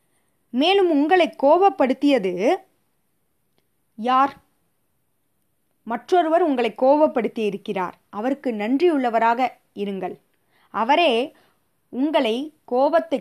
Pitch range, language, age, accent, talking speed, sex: 210-285 Hz, Tamil, 20-39, native, 60 wpm, female